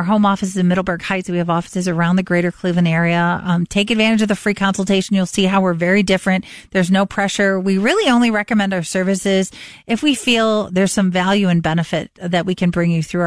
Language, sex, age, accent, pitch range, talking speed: English, female, 40-59, American, 170-205 Hz, 235 wpm